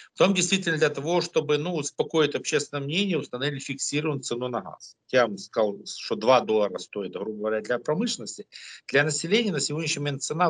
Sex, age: male, 50-69